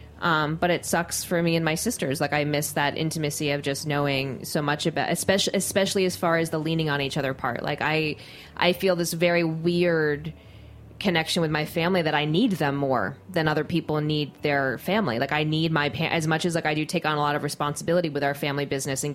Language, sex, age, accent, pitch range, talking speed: English, female, 20-39, American, 140-160 Hz, 230 wpm